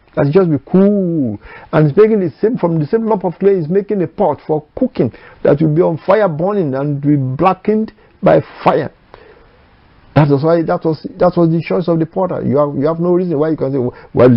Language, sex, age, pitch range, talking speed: English, male, 60-79, 145-190 Hz, 220 wpm